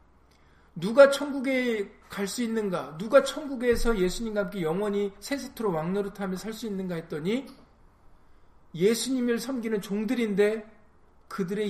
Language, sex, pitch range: Korean, male, 160-230 Hz